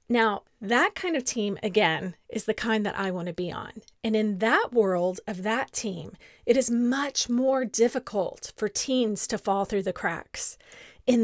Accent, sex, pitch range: American, female, 210-275 Hz